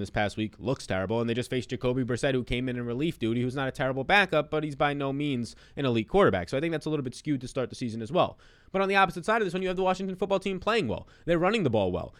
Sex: male